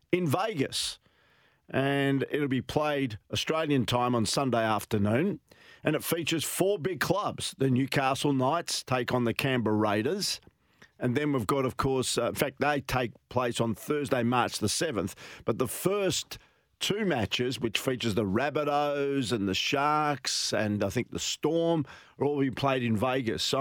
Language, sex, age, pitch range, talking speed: English, male, 50-69, 115-140 Hz, 170 wpm